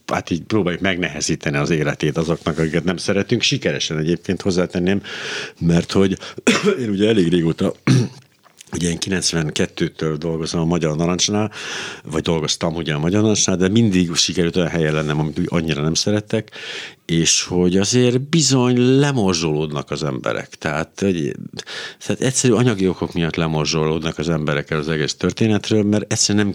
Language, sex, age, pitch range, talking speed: Hungarian, male, 60-79, 80-100 Hz, 145 wpm